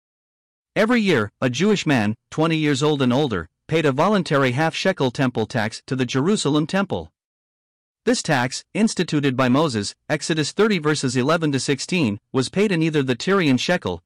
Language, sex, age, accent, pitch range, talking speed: English, male, 50-69, American, 130-170 Hz, 155 wpm